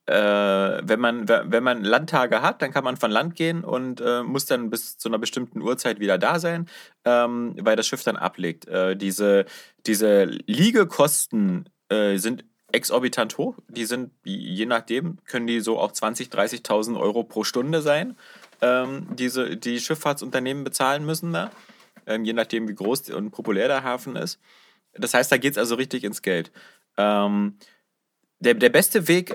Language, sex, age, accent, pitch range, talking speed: German, male, 30-49, German, 110-140 Hz, 170 wpm